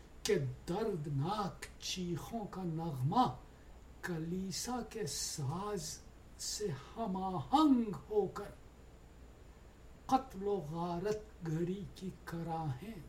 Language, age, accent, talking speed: English, 60-79, Indian, 70 wpm